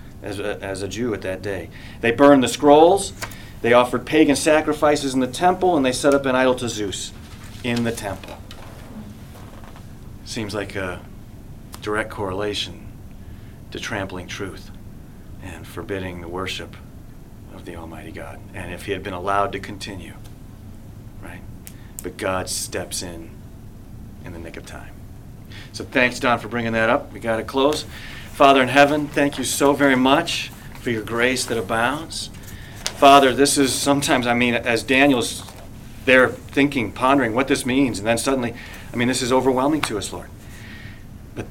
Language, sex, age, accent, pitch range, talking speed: English, male, 40-59, American, 100-120 Hz, 165 wpm